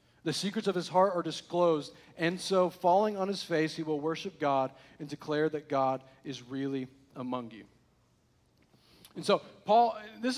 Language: English